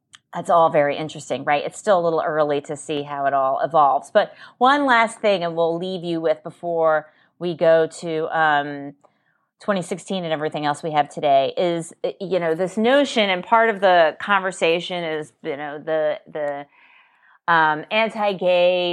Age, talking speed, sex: 30-49, 170 wpm, female